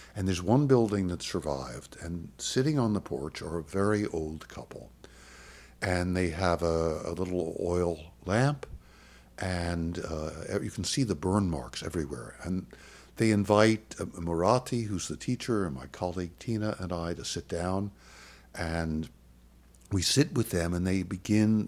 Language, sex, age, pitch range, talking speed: English, male, 60-79, 70-100 Hz, 160 wpm